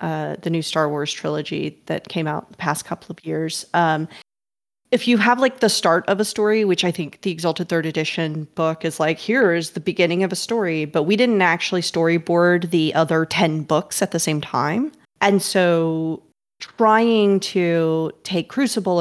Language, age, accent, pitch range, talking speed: English, 30-49, American, 160-195 Hz, 185 wpm